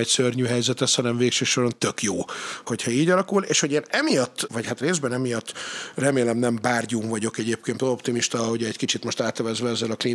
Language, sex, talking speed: Hungarian, male, 185 wpm